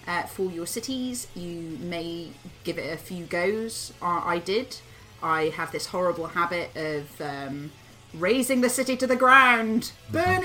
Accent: British